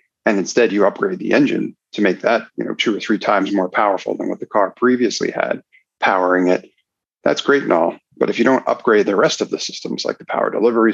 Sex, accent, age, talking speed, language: male, American, 40-59, 235 wpm, English